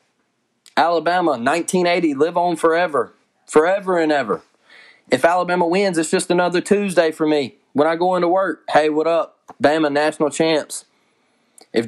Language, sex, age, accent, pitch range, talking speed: English, male, 20-39, American, 120-165 Hz, 145 wpm